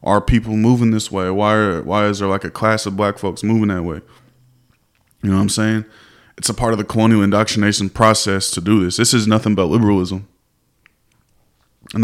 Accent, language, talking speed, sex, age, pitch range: American, English, 205 wpm, male, 20-39, 100-115 Hz